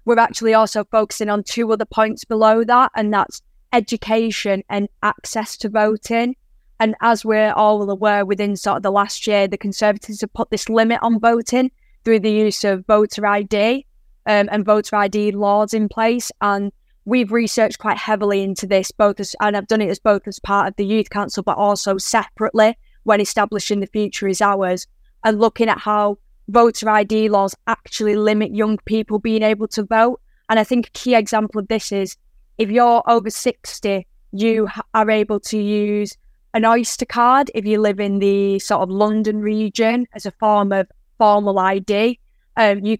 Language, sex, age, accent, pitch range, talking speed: English, female, 10-29, British, 205-225 Hz, 185 wpm